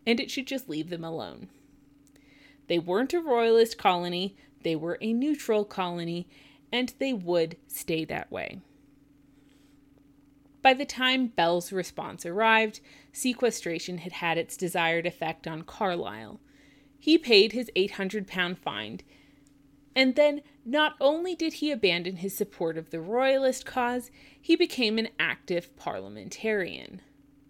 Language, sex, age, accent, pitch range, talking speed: English, female, 30-49, American, 160-240 Hz, 130 wpm